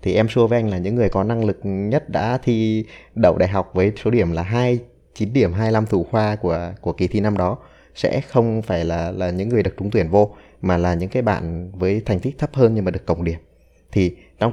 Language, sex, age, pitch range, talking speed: Vietnamese, male, 20-39, 90-110 Hz, 250 wpm